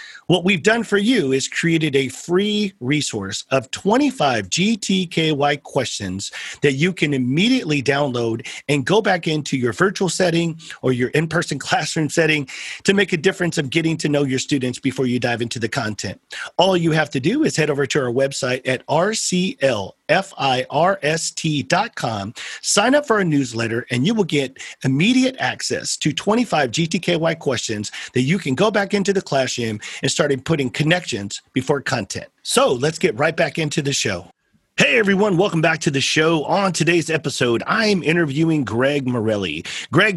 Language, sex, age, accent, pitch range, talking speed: English, male, 40-59, American, 130-180 Hz, 175 wpm